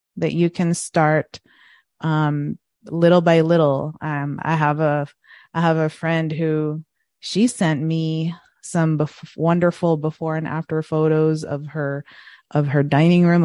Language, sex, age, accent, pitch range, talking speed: English, female, 30-49, American, 155-175 Hz, 145 wpm